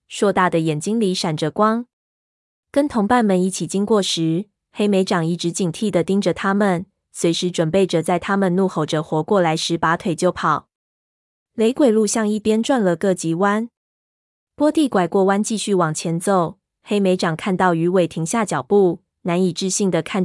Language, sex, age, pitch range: Chinese, female, 20-39, 170-210 Hz